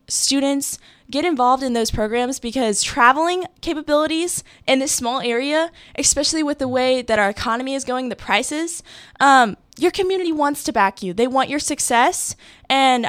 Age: 10-29